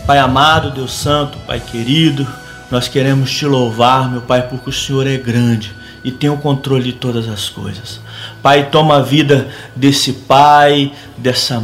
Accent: Brazilian